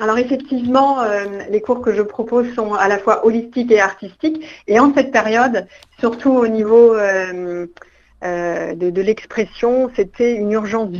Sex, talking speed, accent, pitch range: female, 160 wpm, French, 205-245 Hz